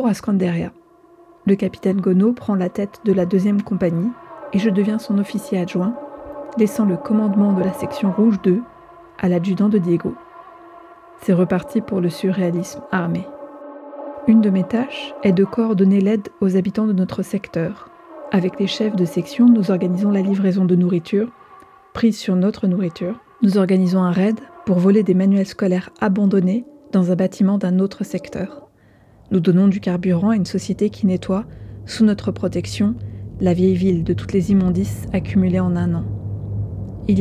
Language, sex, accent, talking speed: French, female, French, 170 wpm